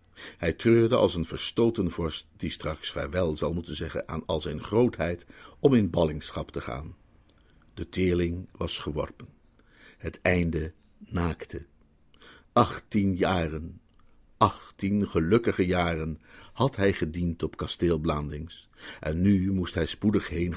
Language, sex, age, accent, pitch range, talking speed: Dutch, male, 50-69, Dutch, 80-100 Hz, 130 wpm